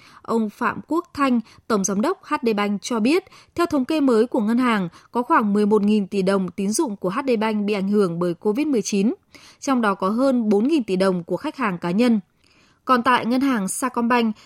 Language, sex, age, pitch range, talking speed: Vietnamese, female, 20-39, 200-260 Hz, 200 wpm